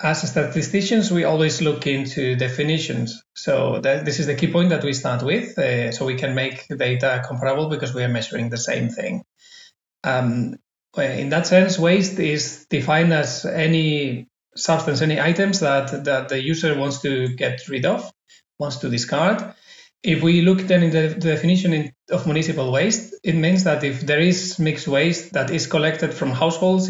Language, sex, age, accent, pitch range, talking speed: English, male, 30-49, Spanish, 140-165 Hz, 175 wpm